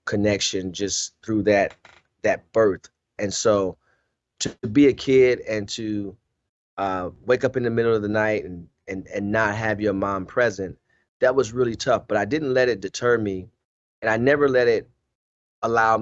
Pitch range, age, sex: 100-115 Hz, 30-49, male